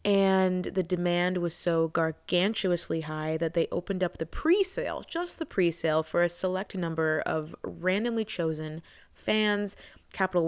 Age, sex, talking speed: 20-39, female, 145 wpm